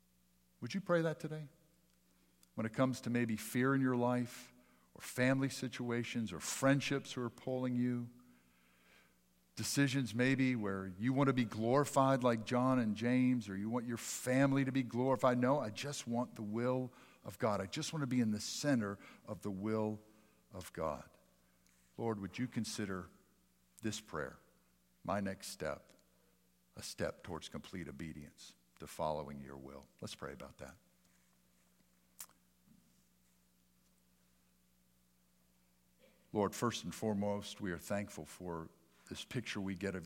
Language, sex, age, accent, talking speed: English, male, 50-69, American, 150 wpm